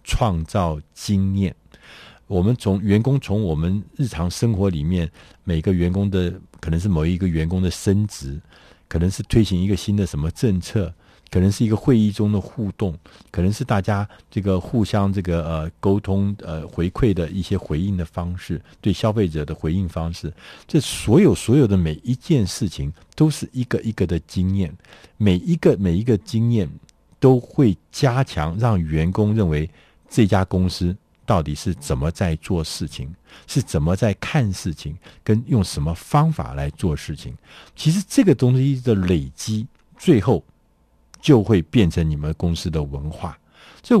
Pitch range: 85-115 Hz